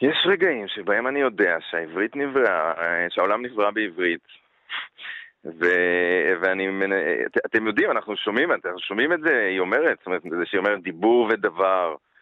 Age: 40-59